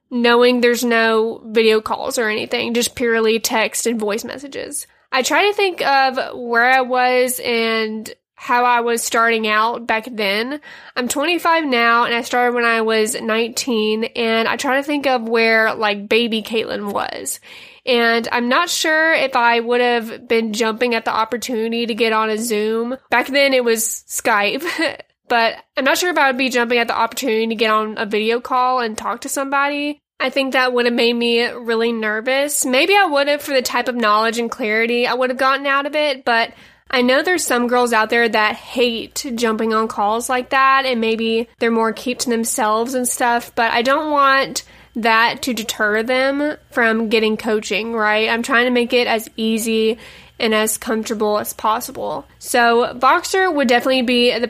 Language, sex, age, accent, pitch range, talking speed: English, female, 20-39, American, 225-265 Hz, 195 wpm